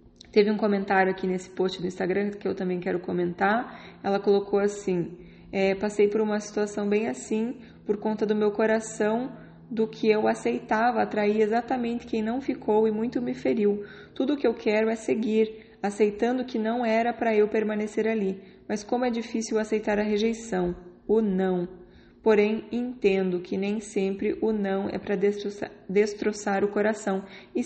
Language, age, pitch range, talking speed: Portuguese, 20-39, 195-220 Hz, 165 wpm